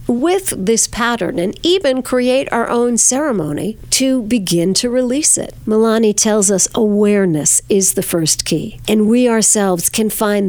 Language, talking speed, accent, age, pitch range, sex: English, 155 wpm, American, 50-69, 185-230 Hz, female